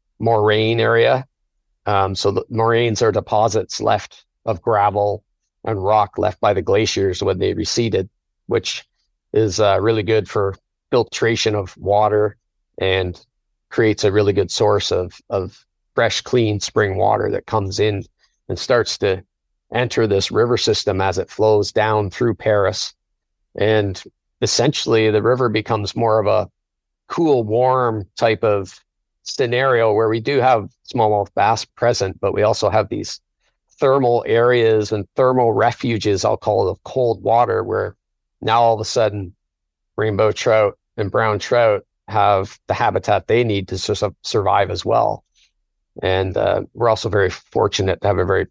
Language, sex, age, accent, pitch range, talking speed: English, male, 40-59, American, 95-115 Hz, 155 wpm